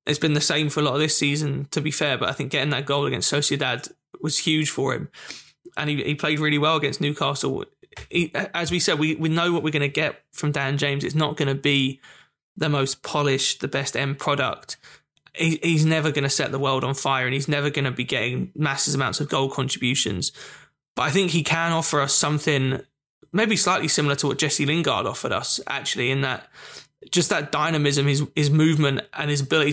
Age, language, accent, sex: 20-39, English, British, male